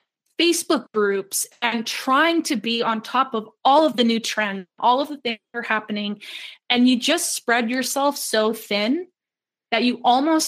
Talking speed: 180 wpm